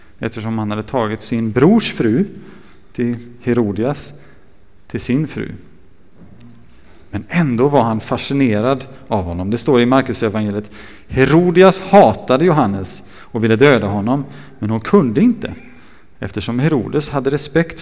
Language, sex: Swedish, male